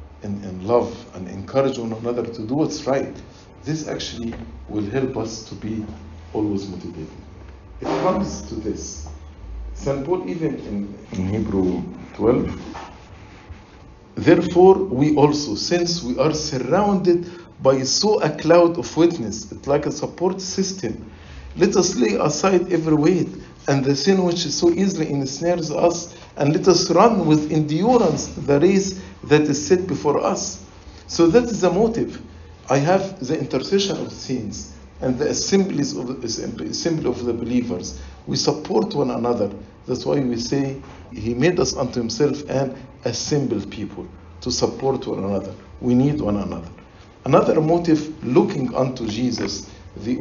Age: 50-69